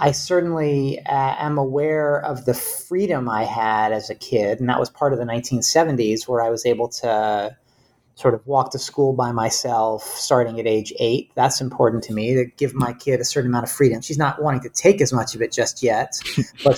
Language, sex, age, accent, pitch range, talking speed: English, male, 30-49, American, 120-145 Hz, 220 wpm